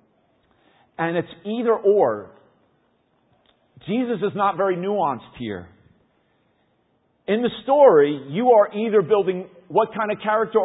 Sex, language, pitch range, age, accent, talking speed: male, English, 160-230 Hz, 50-69, American, 120 wpm